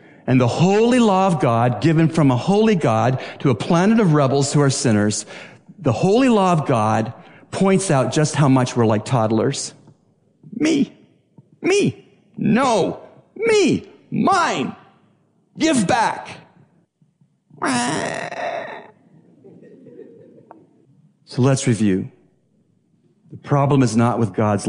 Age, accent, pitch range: 50-69, American, 110-155 Hz